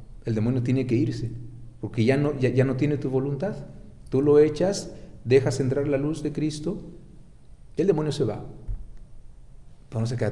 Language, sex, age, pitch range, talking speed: Spanish, male, 40-59, 115-140 Hz, 185 wpm